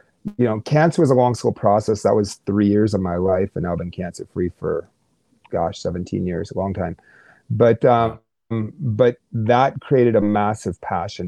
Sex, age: male, 30-49